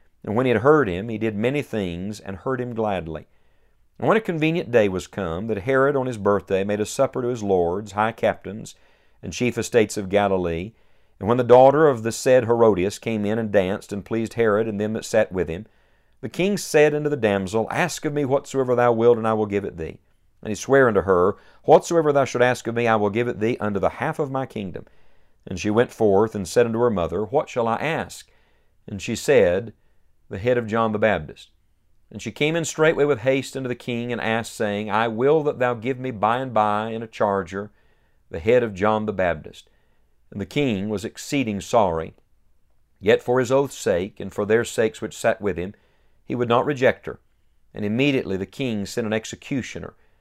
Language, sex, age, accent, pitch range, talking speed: English, male, 50-69, American, 105-130 Hz, 220 wpm